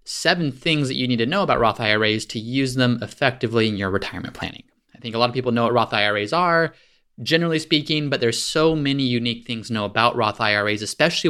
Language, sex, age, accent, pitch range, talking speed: English, male, 30-49, American, 110-135 Hz, 230 wpm